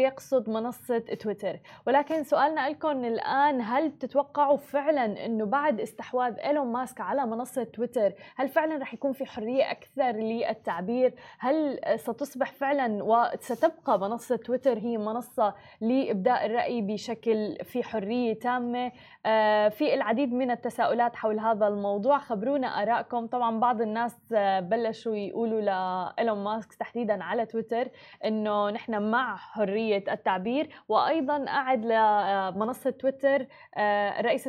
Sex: female